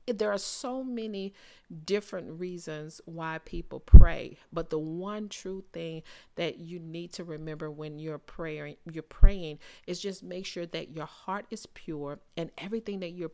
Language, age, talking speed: English, 40-59, 165 wpm